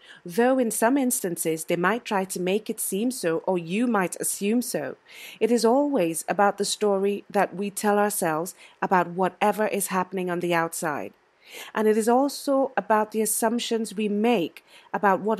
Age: 30-49